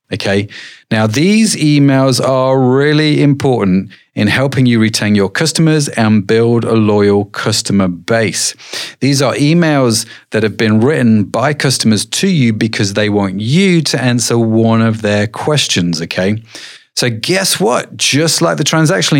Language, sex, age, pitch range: English, male, 40-59, 110-150 Hz